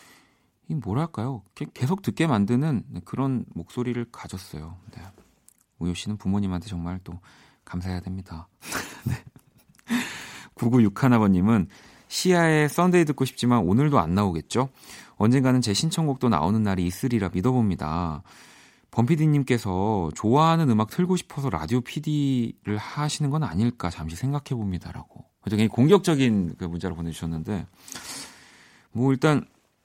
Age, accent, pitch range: 40-59, native, 95-135 Hz